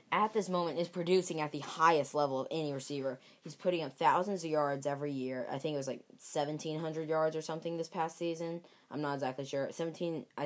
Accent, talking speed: American, 210 wpm